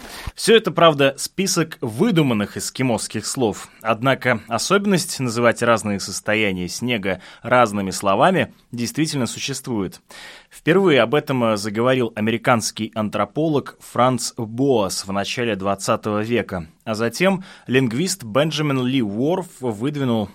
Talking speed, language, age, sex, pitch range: 105 wpm, Russian, 20-39, male, 110-150 Hz